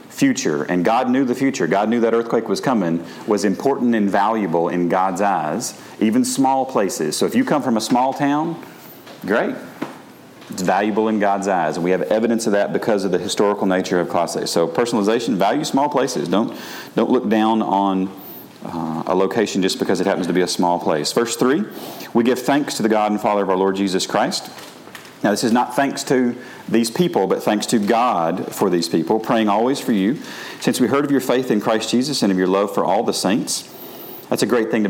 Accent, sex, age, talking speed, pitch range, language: American, male, 40-59, 220 wpm, 95-120 Hz, English